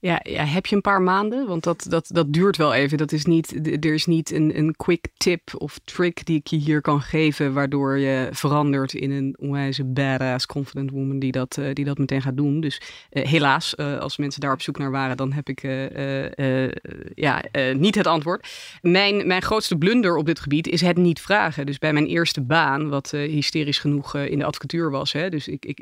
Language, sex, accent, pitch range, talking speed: Dutch, female, Dutch, 140-165 Hz, 220 wpm